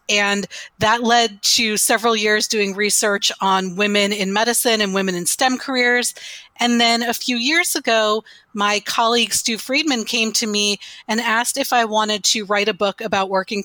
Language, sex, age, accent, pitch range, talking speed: English, female, 30-49, American, 205-240 Hz, 180 wpm